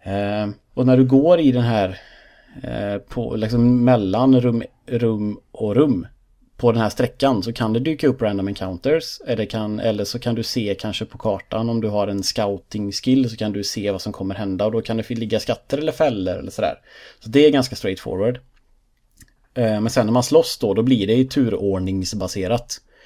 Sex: male